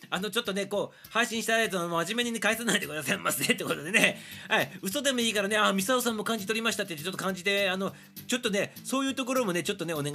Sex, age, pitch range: male, 40-59, 170-215 Hz